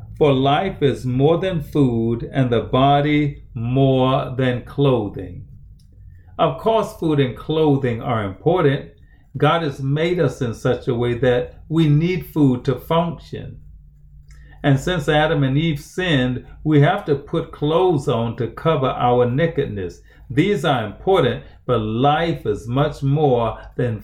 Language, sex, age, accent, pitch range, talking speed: English, male, 40-59, American, 115-150 Hz, 145 wpm